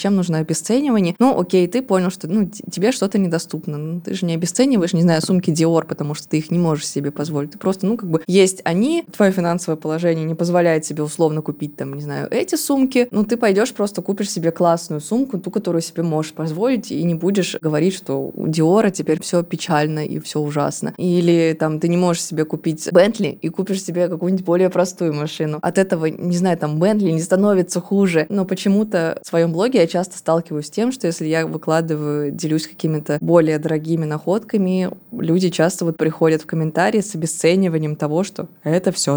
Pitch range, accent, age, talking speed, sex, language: 155-190 Hz, native, 20-39, 200 wpm, female, Russian